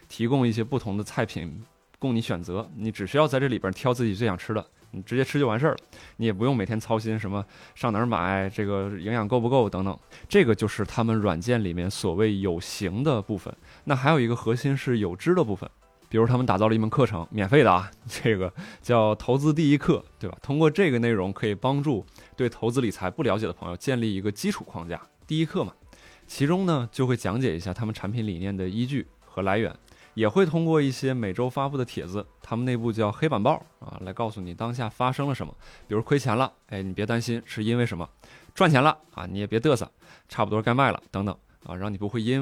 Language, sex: Chinese, male